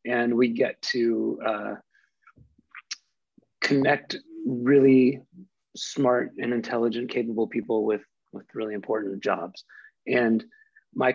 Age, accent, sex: 30-49, American, male